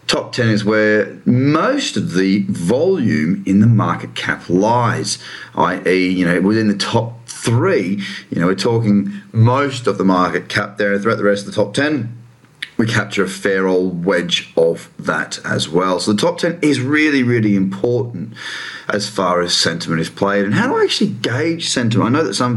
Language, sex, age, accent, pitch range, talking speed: English, male, 30-49, Australian, 95-125 Hz, 195 wpm